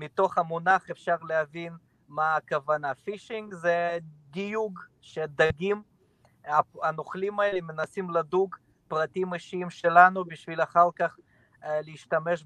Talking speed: 100 wpm